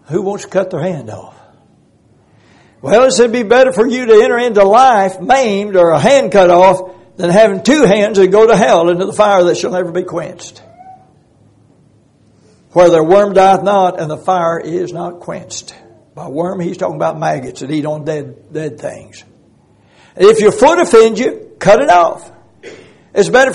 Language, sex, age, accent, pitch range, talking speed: English, male, 60-79, American, 175-225 Hz, 185 wpm